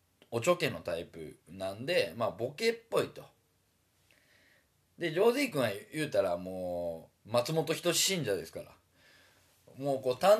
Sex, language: male, Japanese